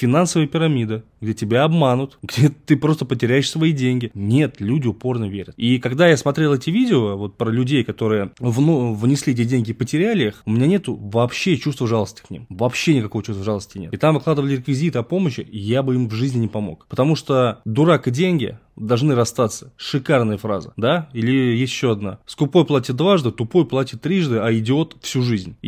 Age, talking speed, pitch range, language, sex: 20-39, 185 wpm, 115-150 Hz, Russian, male